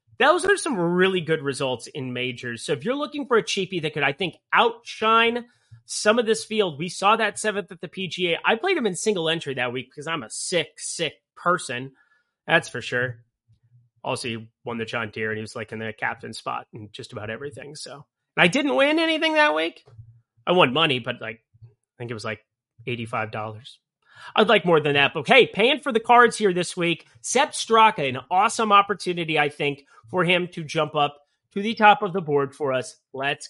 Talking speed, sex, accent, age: 210 wpm, male, American, 30-49